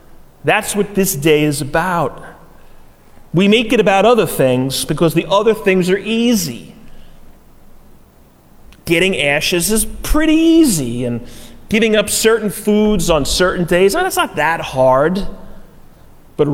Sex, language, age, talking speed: male, English, 30-49, 140 wpm